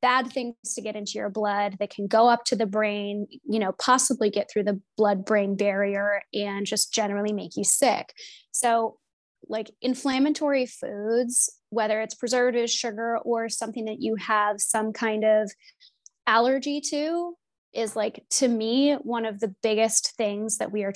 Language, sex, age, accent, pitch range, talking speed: English, female, 20-39, American, 210-245 Hz, 170 wpm